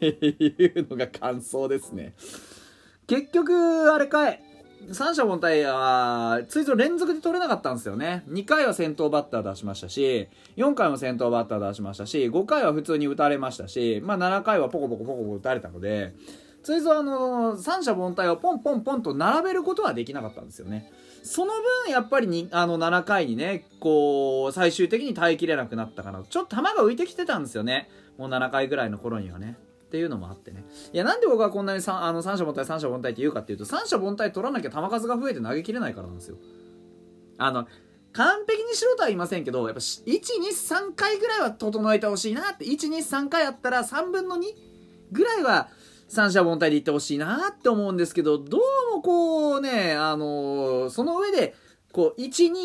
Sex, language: male, Japanese